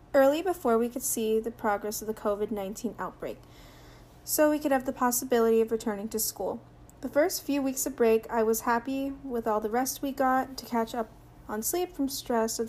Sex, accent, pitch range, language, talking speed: female, American, 215-260 Hz, English, 210 wpm